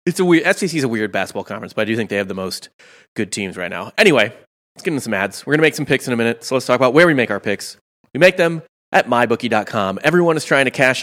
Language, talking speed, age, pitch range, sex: English, 295 wpm, 30-49, 115-145 Hz, male